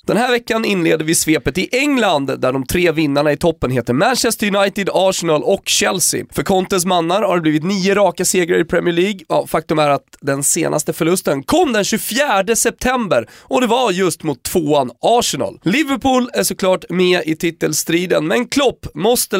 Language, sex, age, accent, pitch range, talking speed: Swedish, male, 30-49, native, 150-210 Hz, 185 wpm